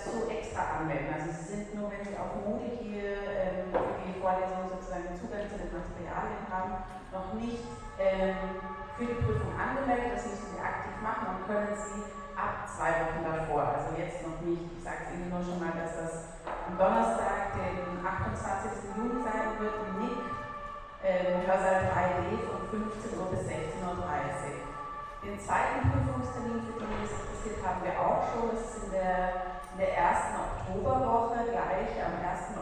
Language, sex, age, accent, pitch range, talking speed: German, female, 30-49, German, 170-210 Hz, 170 wpm